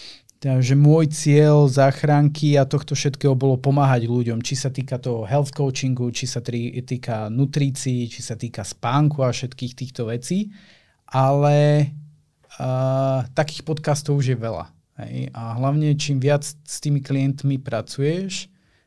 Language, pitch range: Slovak, 120-140 Hz